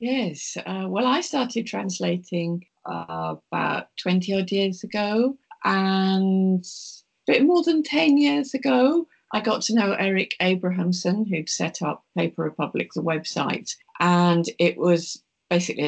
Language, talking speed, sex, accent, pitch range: English, 140 wpm, female, British, 155-185 Hz